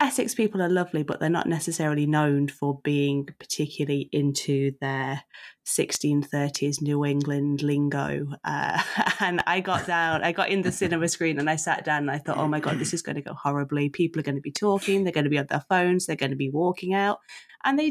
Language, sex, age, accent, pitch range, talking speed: English, female, 20-39, British, 150-180 Hz, 220 wpm